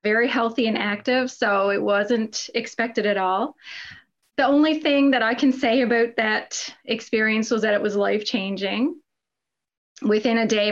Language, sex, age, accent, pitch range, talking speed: English, female, 30-49, American, 215-260 Hz, 160 wpm